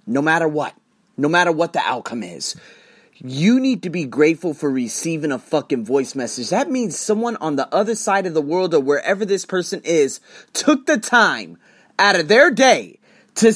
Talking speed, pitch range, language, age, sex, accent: 190 wpm, 155-230 Hz, English, 30-49, male, American